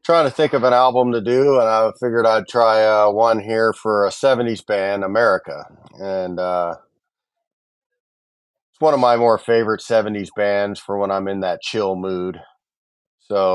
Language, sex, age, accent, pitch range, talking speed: English, male, 40-59, American, 100-120 Hz, 175 wpm